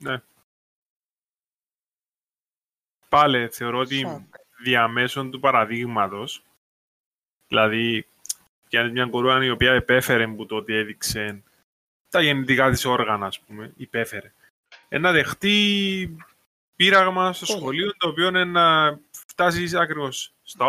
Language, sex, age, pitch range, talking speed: Greek, male, 20-39, 110-145 Hz, 120 wpm